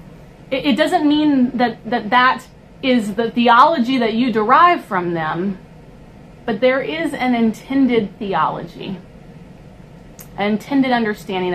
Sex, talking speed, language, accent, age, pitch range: female, 120 wpm, English, American, 30-49, 180-250 Hz